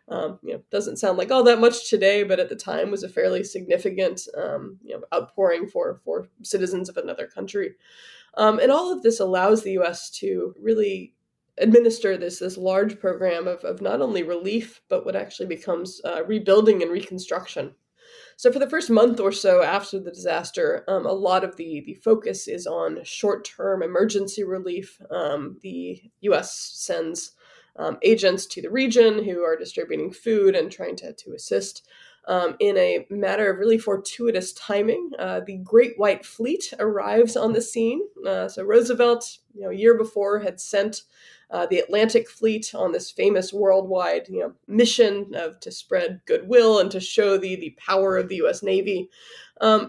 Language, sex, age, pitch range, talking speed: English, female, 20-39, 195-260 Hz, 180 wpm